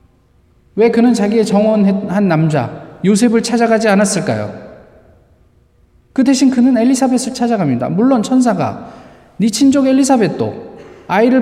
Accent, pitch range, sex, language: native, 185-255 Hz, male, Korean